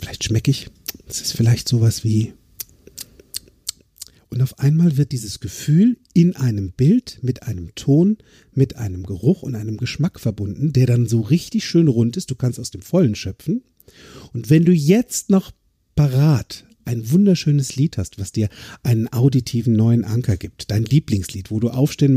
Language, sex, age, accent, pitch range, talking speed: German, male, 50-69, German, 110-155 Hz, 170 wpm